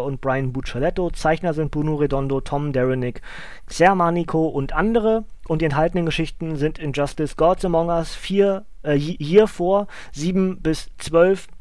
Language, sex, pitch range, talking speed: German, male, 150-185 Hz, 145 wpm